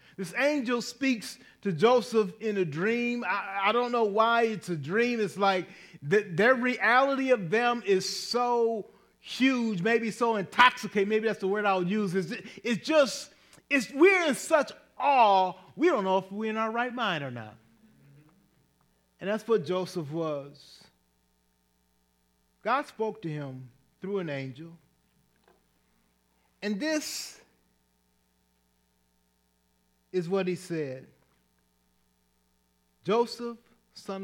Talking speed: 130 wpm